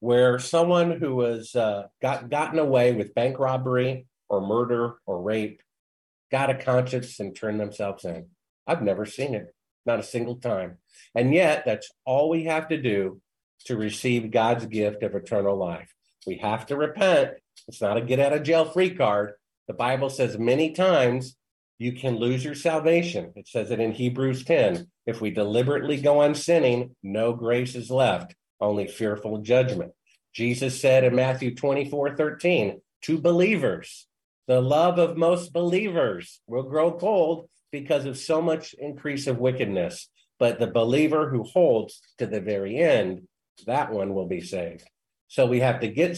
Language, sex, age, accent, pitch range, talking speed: English, male, 50-69, American, 115-145 Hz, 165 wpm